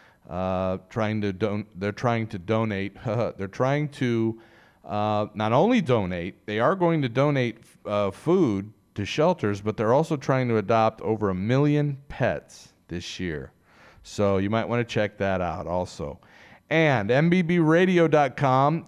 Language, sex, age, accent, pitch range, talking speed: English, male, 40-59, American, 110-145 Hz, 150 wpm